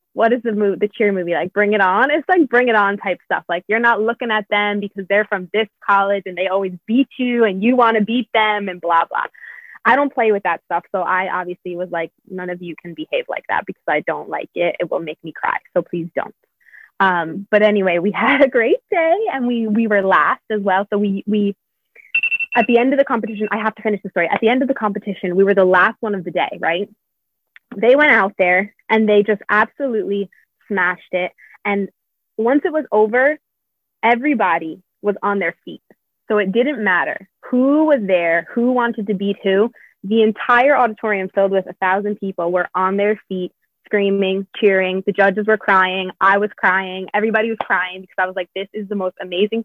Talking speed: 220 wpm